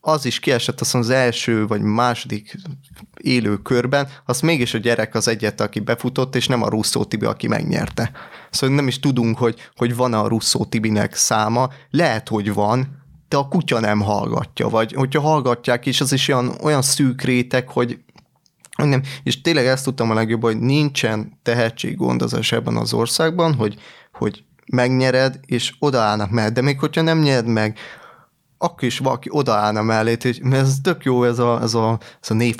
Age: 20-39